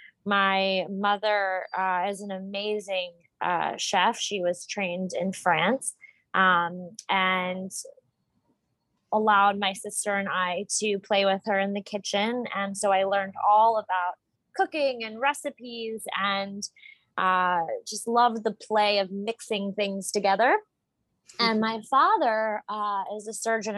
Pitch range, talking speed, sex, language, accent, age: 185-220 Hz, 135 wpm, female, English, American, 20-39